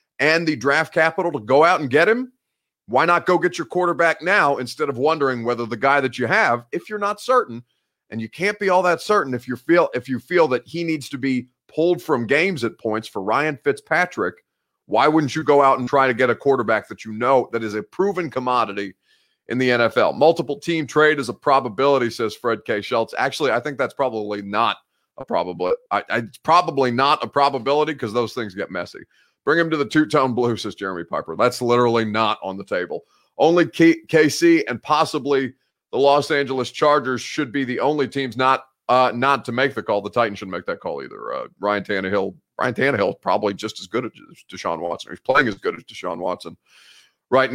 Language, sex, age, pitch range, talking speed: English, male, 30-49, 125-160 Hz, 215 wpm